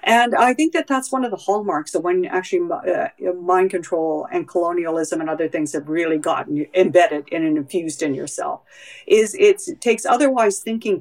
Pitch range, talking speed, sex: 165-260 Hz, 180 wpm, female